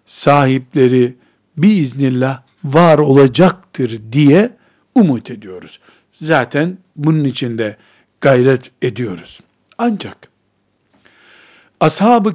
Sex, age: male, 60-79